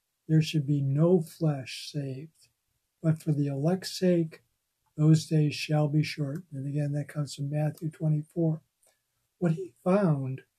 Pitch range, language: 140-170 Hz, English